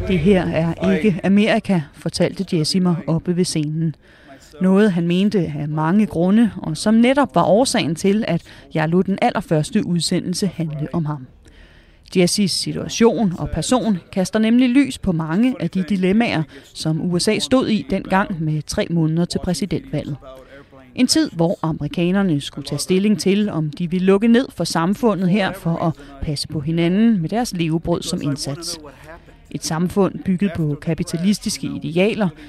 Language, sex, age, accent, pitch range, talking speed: Danish, female, 30-49, native, 155-205 Hz, 155 wpm